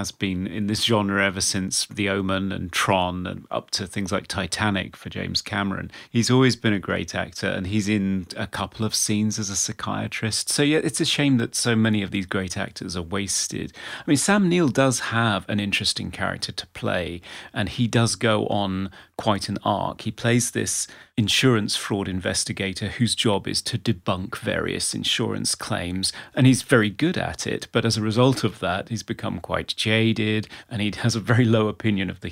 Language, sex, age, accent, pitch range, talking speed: English, male, 30-49, British, 95-115 Hz, 200 wpm